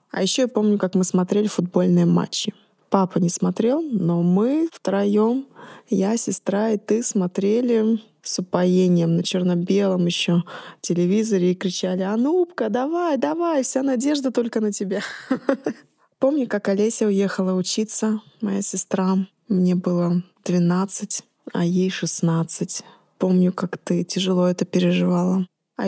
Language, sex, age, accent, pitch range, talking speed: Russian, female, 20-39, native, 180-210 Hz, 130 wpm